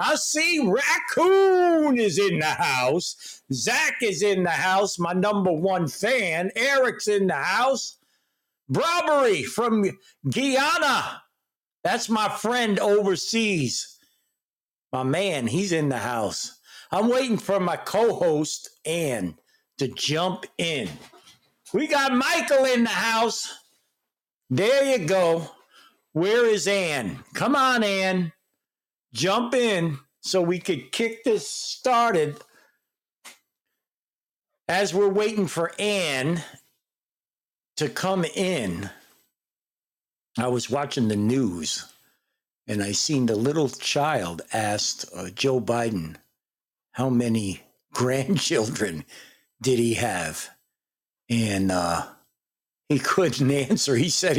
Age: 60-79